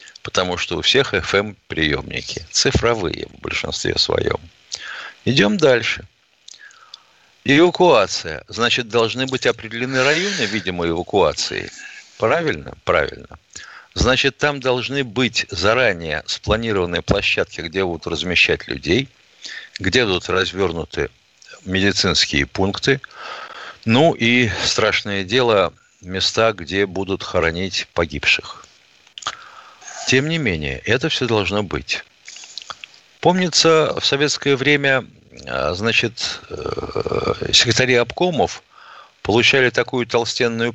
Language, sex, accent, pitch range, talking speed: Russian, male, native, 95-140 Hz, 95 wpm